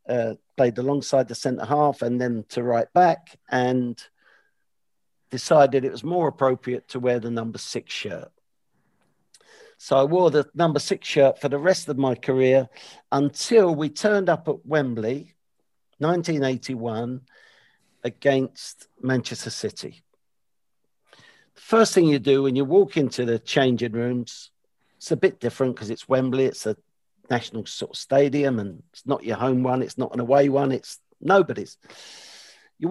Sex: male